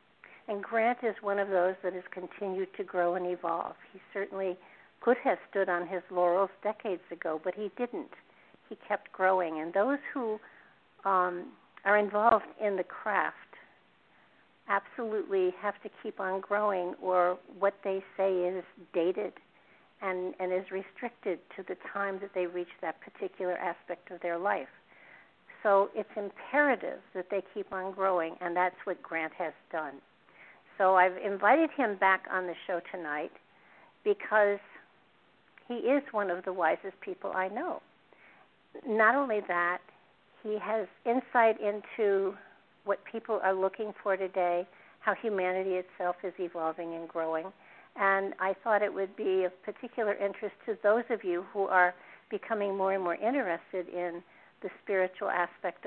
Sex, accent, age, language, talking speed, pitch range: female, American, 60-79, English, 155 wpm, 180-210 Hz